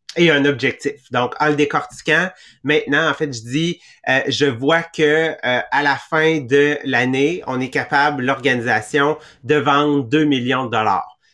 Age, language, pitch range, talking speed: 30-49, English, 140-165 Hz, 170 wpm